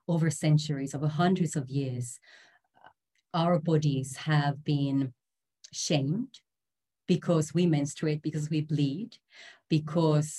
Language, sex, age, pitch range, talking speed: English, female, 30-49, 140-170 Hz, 105 wpm